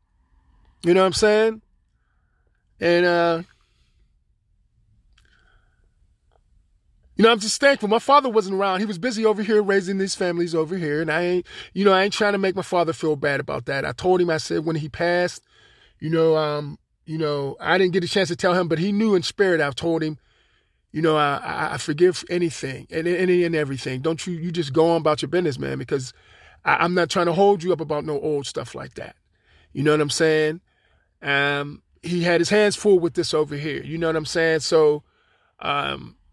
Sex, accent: male, American